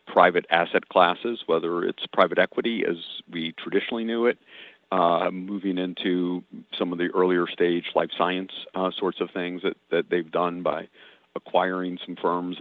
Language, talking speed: English, 160 wpm